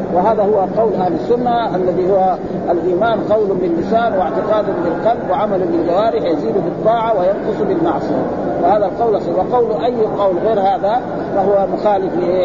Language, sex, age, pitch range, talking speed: Arabic, male, 50-69, 195-240 Hz, 130 wpm